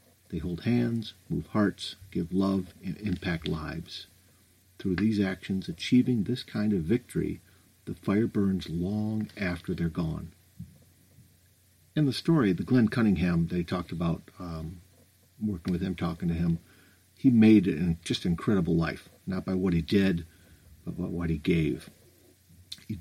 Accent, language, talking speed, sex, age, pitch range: American, English, 150 wpm, male, 50-69, 85-100 Hz